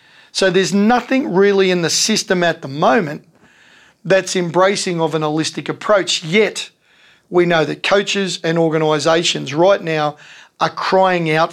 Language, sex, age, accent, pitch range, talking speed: English, male, 40-59, Australian, 155-190 Hz, 145 wpm